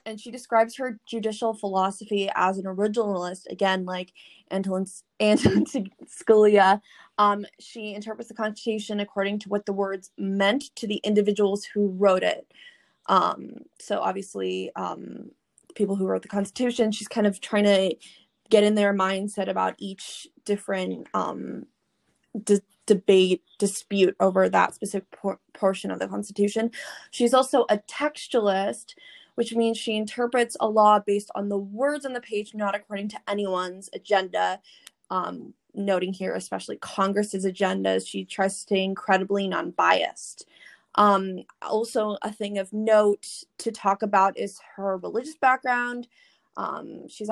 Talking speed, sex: 140 wpm, female